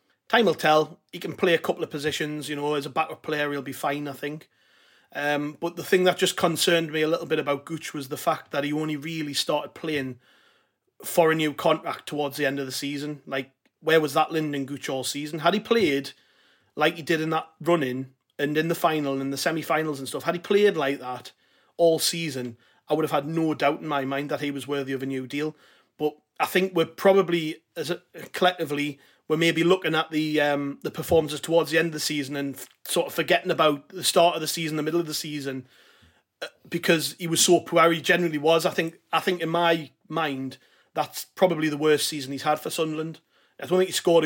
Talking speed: 235 wpm